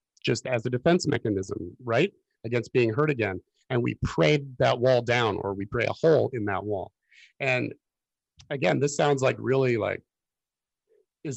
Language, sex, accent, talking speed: English, male, American, 170 wpm